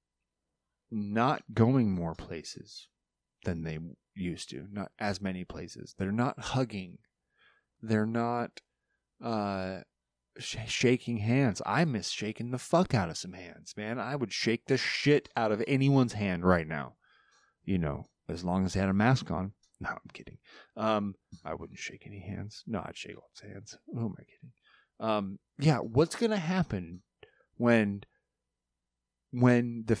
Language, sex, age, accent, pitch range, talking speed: English, male, 30-49, American, 90-120 Hz, 155 wpm